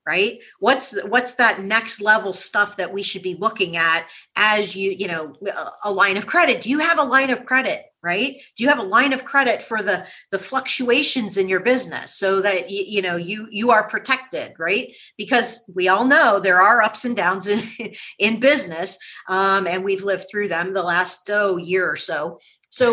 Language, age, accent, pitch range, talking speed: English, 40-59, American, 190-255 Hz, 205 wpm